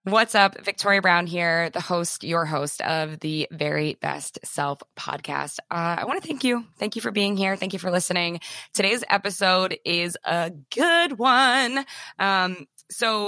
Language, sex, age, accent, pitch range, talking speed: English, female, 20-39, American, 155-195 Hz, 170 wpm